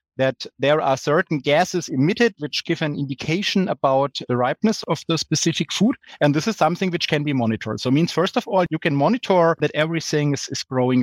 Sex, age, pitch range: male, 30-49, 135-175 Hz